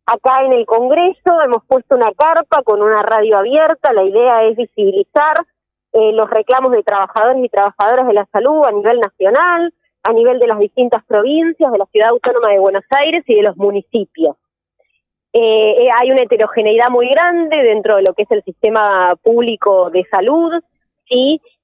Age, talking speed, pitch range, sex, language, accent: 20-39, 175 wpm, 215-290 Hz, female, Spanish, Argentinian